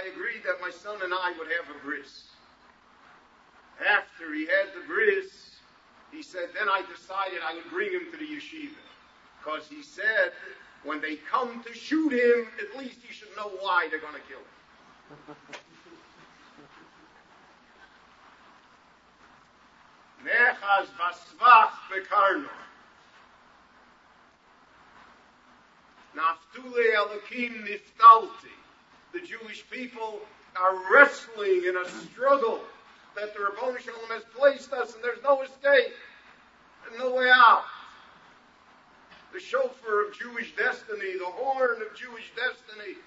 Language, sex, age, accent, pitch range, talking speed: English, male, 50-69, American, 190-280 Hz, 115 wpm